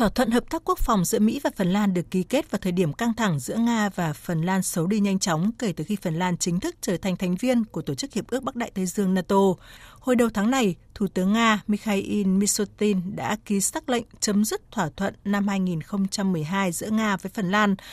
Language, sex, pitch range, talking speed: Vietnamese, female, 180-220 Hz, 245 wpm